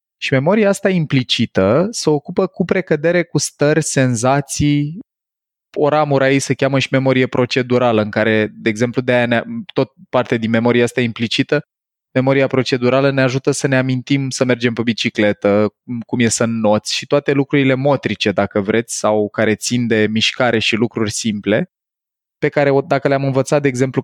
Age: 20-39